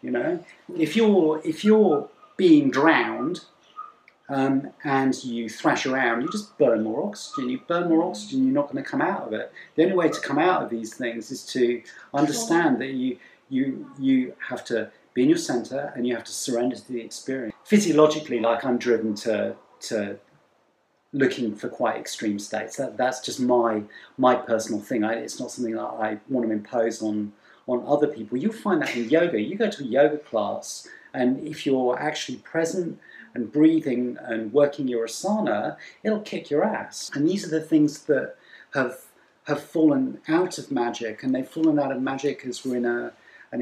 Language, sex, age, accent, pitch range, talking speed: English, male, 40-59, British, 120-165 Hz, 195 wpm